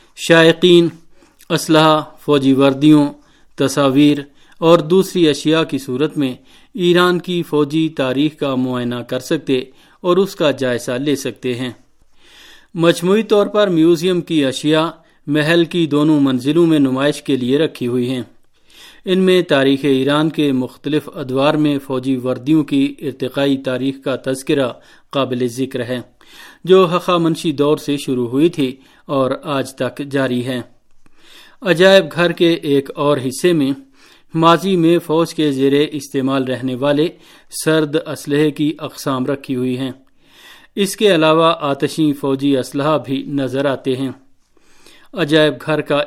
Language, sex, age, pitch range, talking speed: Urdu, male, 40-59, 135-165 Hz, 140 wpm